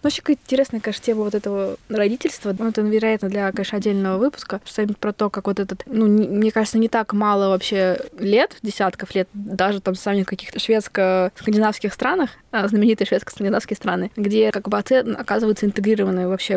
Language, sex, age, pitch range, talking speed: Russian, female, 20-39, 190-220 Hz, 175 wpm